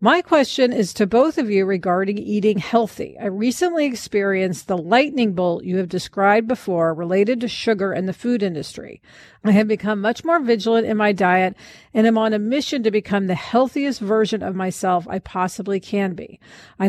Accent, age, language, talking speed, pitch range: American, 40-59, English, 190 wpm, 190-245 Hz